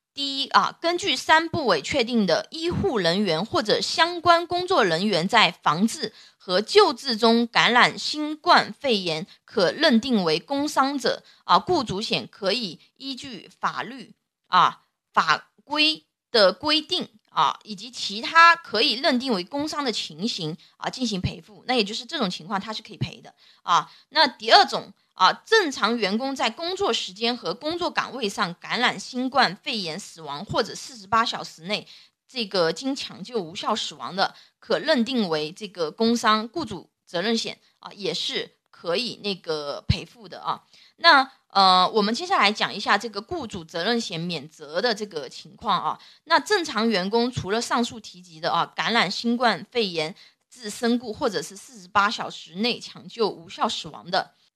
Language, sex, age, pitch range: Chinese, female, 20-39, 200-280 Hz